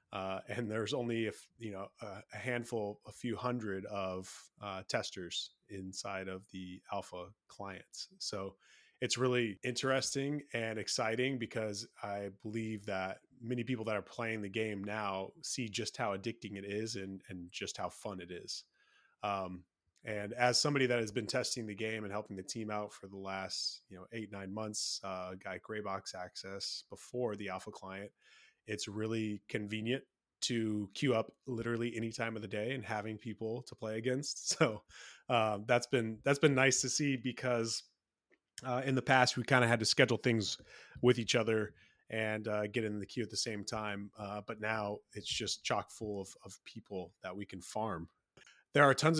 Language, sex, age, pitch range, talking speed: English, male, 20-39, 100-120 Hz, 185 wpm